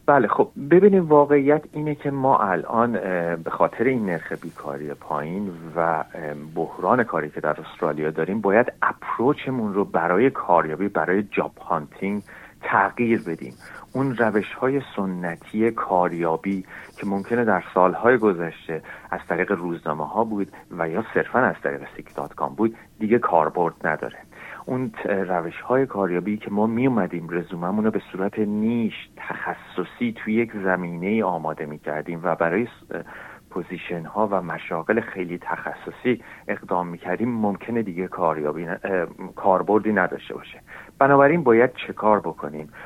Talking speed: 135 wpm